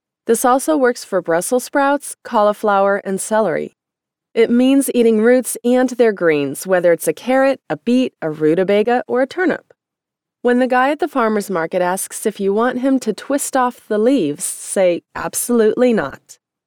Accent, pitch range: American, 180-250 Hz